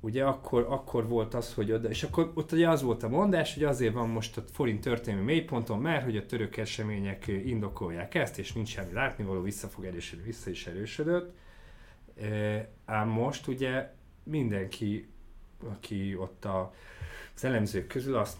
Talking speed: 175 wpm